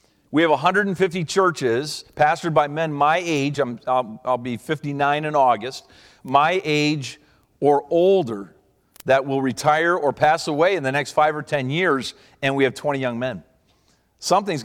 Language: English